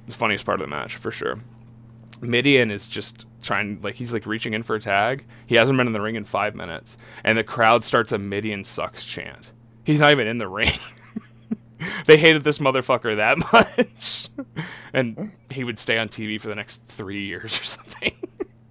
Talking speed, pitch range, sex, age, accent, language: 200 wpm, 105-120 Hz, male, 20-39, American, English